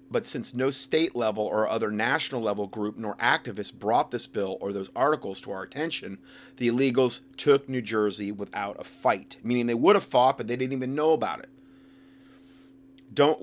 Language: English